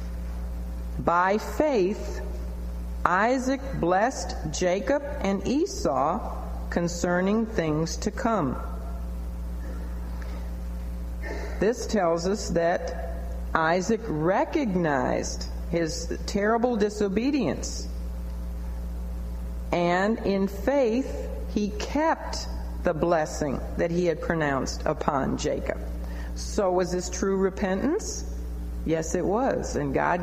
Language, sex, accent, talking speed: English, female, American, 85 wpm